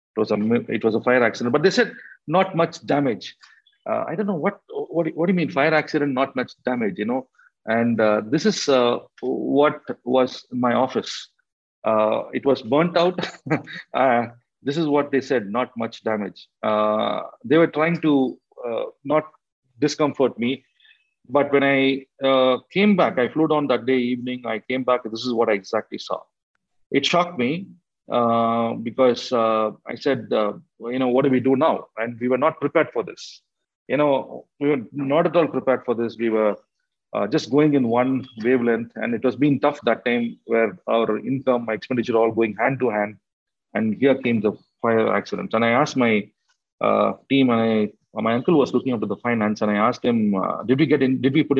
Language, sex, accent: English, male, Indian